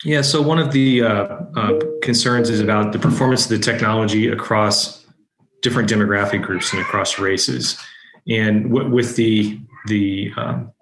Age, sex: 30-49, male